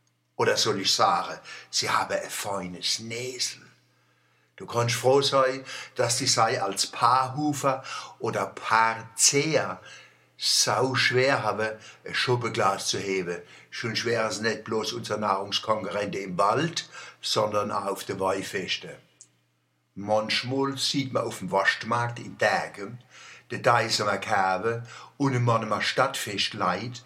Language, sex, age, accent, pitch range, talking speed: German, male, 60-79, German, 100-130 Hz, 120 wpm